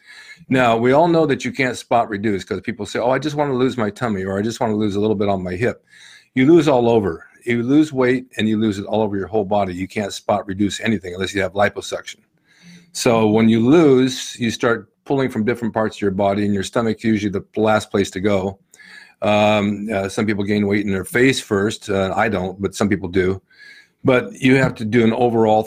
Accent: American